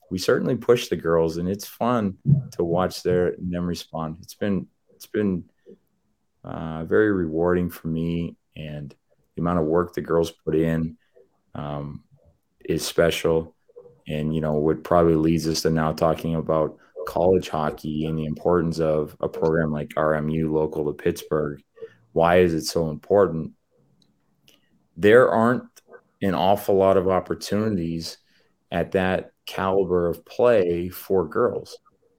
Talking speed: 145 wpm